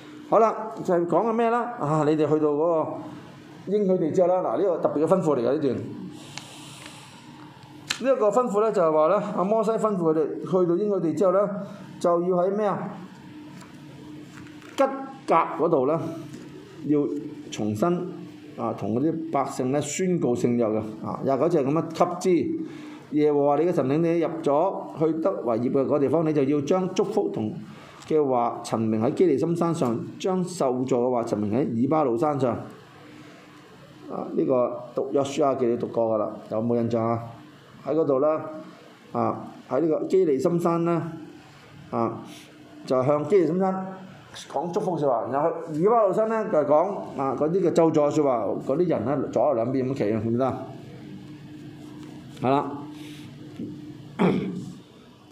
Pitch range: 140-185 Hz